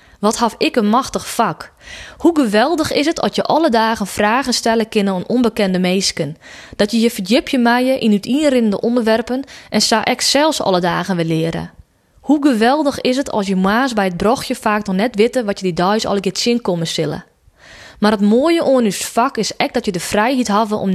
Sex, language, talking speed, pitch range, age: female, Dutch, 210 wpm, 200-255 Hz, 20-39